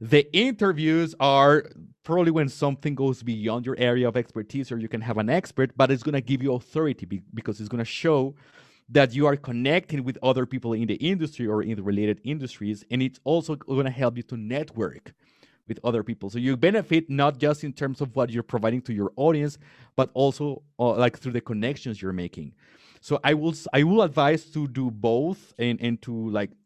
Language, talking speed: English, 210 wpm